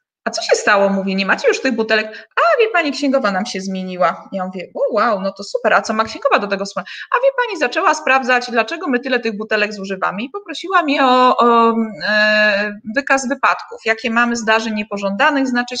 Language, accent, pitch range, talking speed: Polish, native, 210-295 Hz, 205 wpm